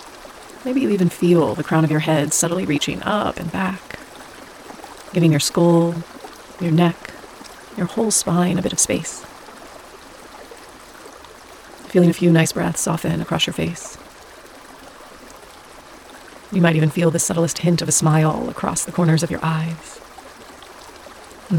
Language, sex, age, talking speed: English, female, 30-49, 145 wpm